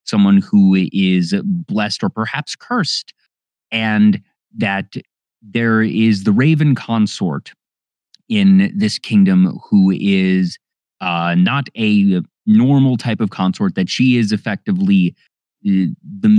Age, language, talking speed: 30-49, English, 115 wpm